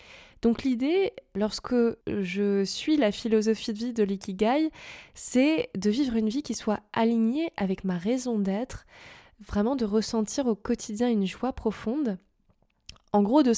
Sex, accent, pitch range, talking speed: female, French, 205-260 Hz, 150 wpm